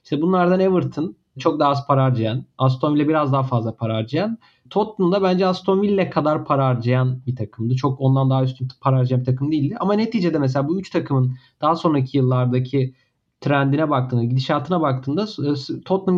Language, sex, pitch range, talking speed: Turkish, male, 130-170 Hz, 180 wpm